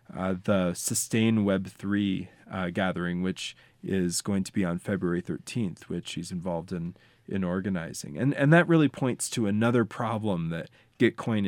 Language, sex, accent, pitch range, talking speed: English, male, American, 95-115 Hz, 160 wpm